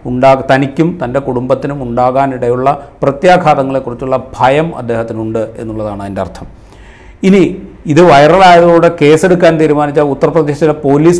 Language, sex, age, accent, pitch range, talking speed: Malayalam, male, 40-59, native, 120-150 Hz, 95 wpm